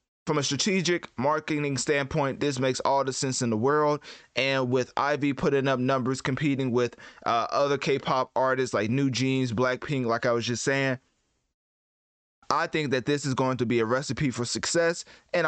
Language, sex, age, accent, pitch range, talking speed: English, male, 20-39, American, 120-150 Hz, 180 wpm